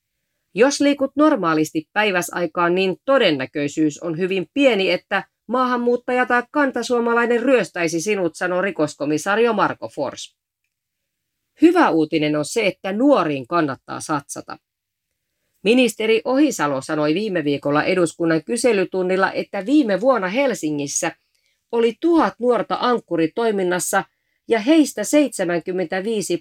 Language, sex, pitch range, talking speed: Finnish, female, 165-245 Hz, 100 wpm